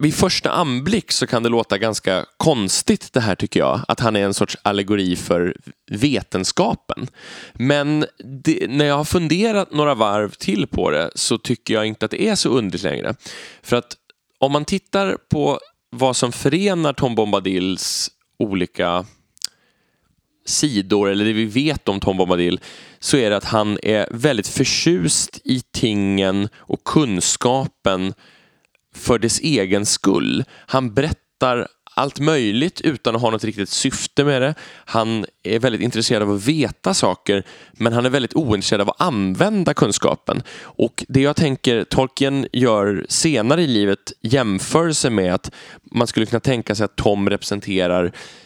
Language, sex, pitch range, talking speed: Swedish, male, 100-135 Hz, 155 wpm